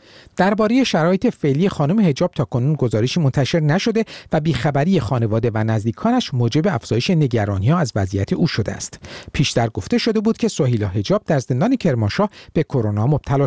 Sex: male